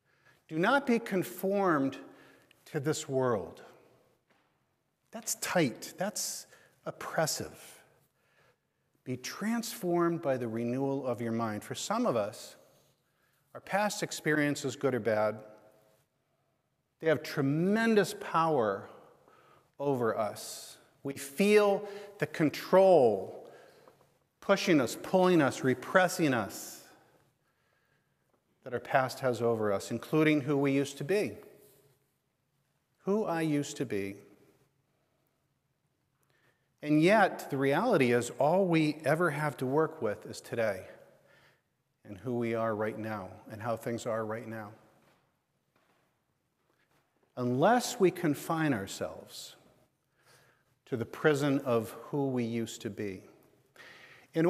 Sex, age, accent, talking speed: male, 50-69, American, 110 wpm